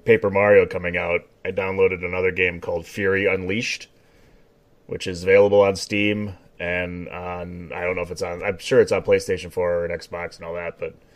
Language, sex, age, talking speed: English, male, 30-49, 195 wpm